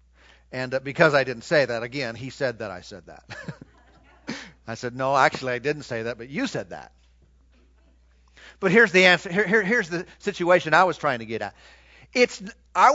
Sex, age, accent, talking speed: male, 40-59, American, 195 wpm